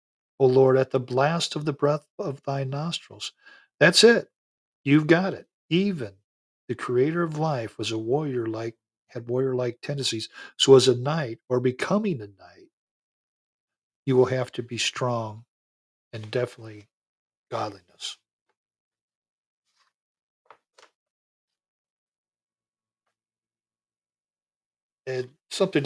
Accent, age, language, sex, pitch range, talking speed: American, 50-69, English, male, 110-135 Hz, 115 wpm